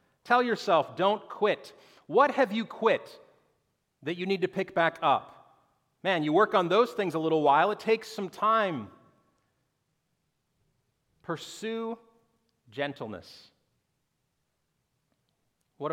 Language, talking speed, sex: English, 115 wpm, male